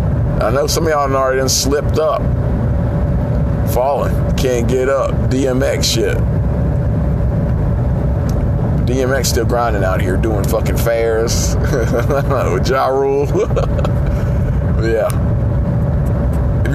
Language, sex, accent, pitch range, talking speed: English, male, American, 115-140 Hz, 105 wpm